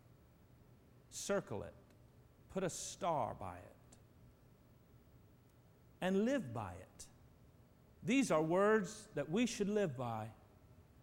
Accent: American